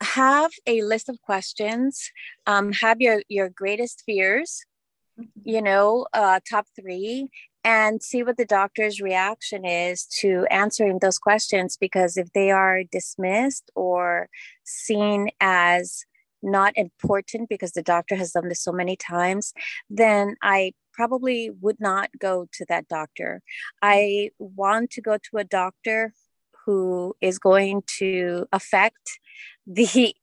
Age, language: 30-49, English